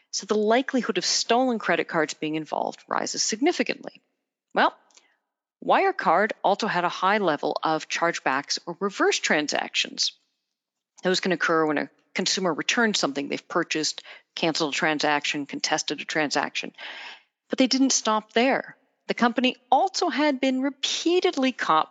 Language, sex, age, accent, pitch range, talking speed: English, female, 40-59, American, 170-265 Hz, 140 wpm